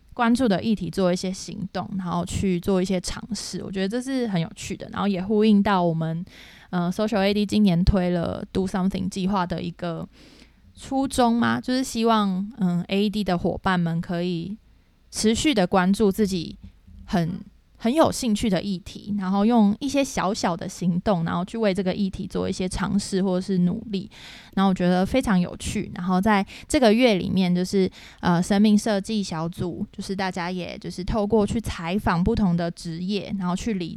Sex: female